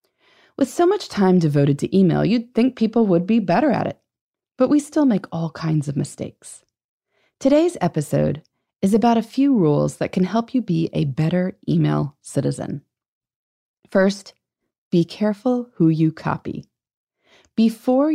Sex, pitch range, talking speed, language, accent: female, 150-225 Hz, 150 wpm, English, American